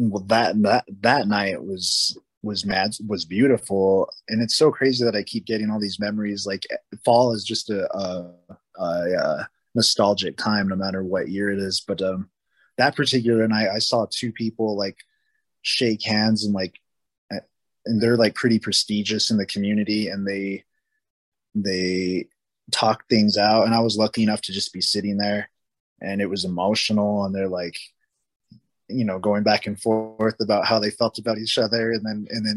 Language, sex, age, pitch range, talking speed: English, male, 20-39, 95-115 Hz, 180 wpm